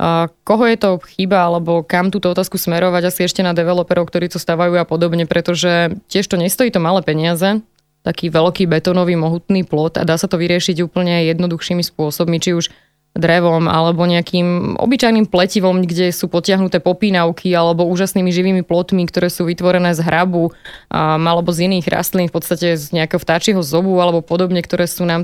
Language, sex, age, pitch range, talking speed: Slovak, female, 20-39, 175-190 Hz, 175 wpm